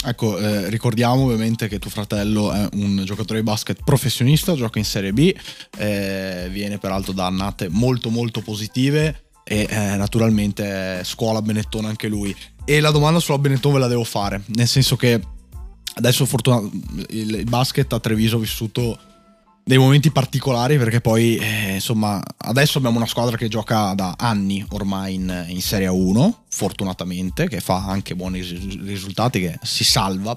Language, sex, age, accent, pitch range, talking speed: Italian, male, 20-39, native, 100-125 Hz, 160 wpm